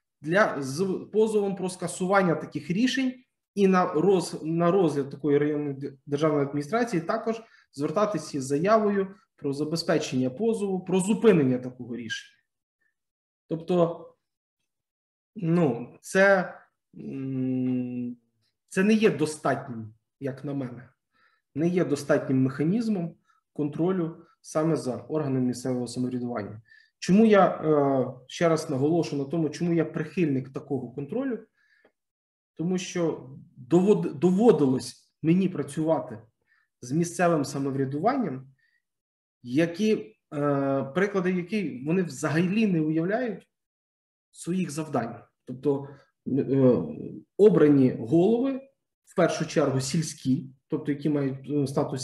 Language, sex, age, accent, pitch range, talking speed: Ukrainian, male, 20-39, native, 140-190 Hz, 100 wpm